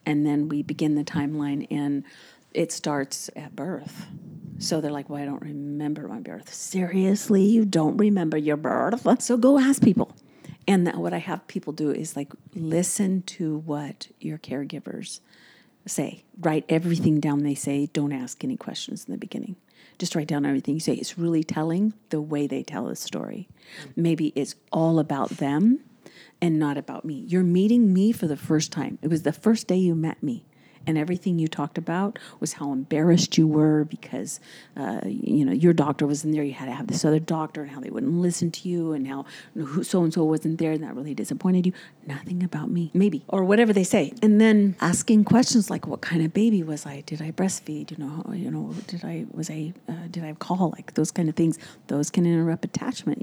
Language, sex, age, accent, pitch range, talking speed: English, female, 40-59, American, 150-190 Hz, 205 wpm